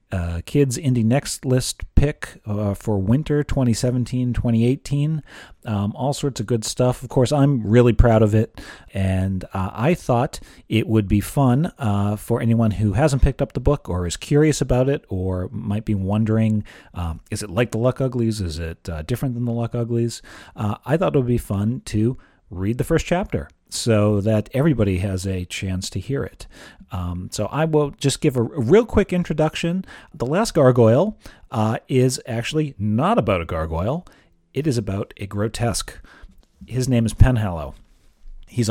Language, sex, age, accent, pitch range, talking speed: English, male, 40-59, American, 105-130 Hz, 180 wpm